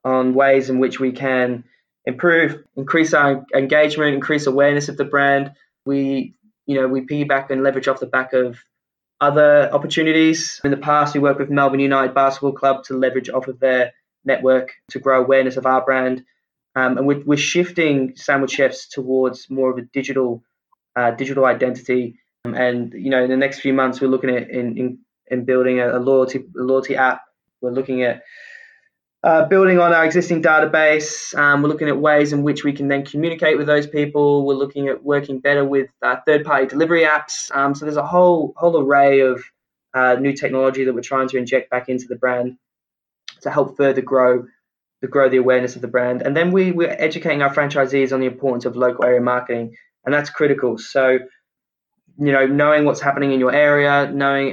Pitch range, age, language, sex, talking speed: 130-145 Hz, 10-29, English, male, 195 wpm